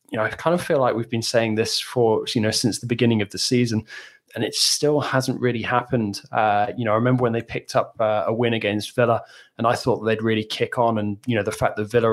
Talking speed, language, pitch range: 265 wpm, English, 110-125 Hz